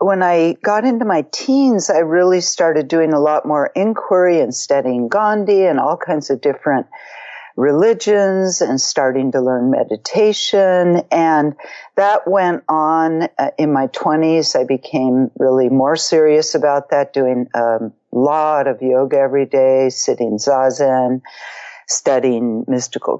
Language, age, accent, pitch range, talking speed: English, 50-69, American, 135-185 Hz, 135 wpm